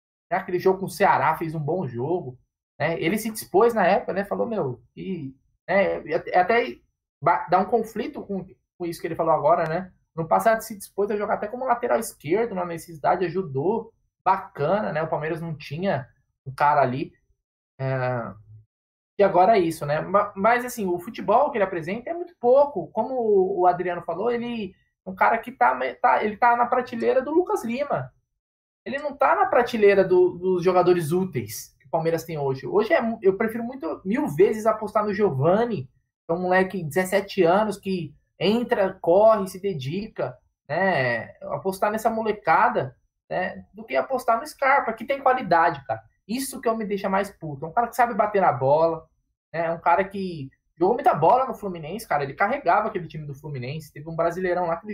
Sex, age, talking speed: male, 20-39, 190 wpm